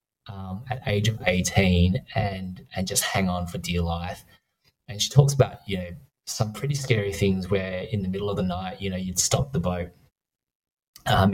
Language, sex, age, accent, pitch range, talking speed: English, male, 20-39, Australian, 90-105 Hz, 195 wpm